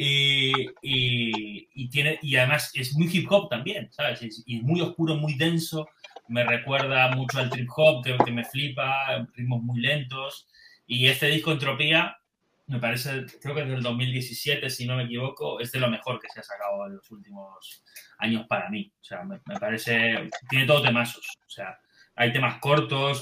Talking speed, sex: 190 wpm, male